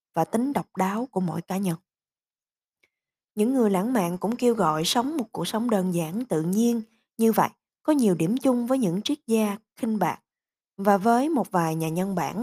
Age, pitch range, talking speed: 20-39, 175-235 Hz, 205 wpm